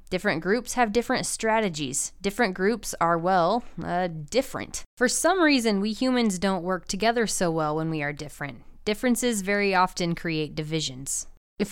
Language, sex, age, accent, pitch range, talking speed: English, female, 20-39, American, 180-260 Hz, 160 wpm